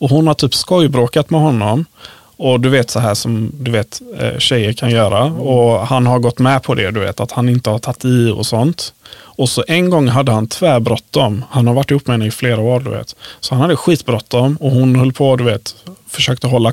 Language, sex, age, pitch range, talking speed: Swedish, male, 30-49, 115-140 Hz, 240 wpm